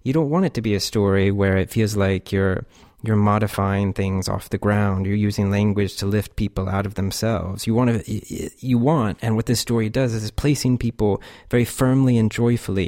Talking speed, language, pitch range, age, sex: 215 wpm, English, 95-110 Hz, 30-49, male